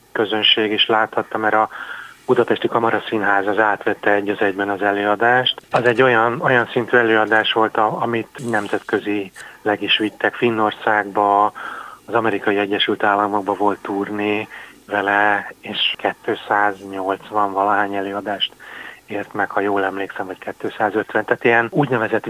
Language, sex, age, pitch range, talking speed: Hungarian, male, 30-49, 100-110 Hz, 130 wpm